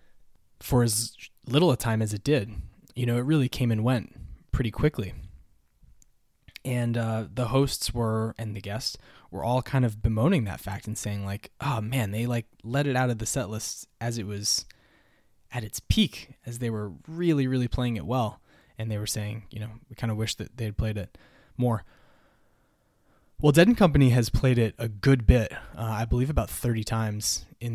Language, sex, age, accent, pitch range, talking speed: English, male, 20-39, American, 105-120 Hz, 200 wpm